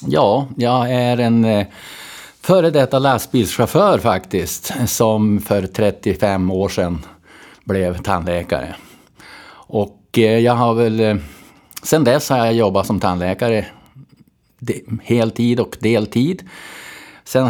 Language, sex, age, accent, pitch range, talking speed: Swedish, male, 50-69, Norwegian, 95-120 Hz, 105 wpm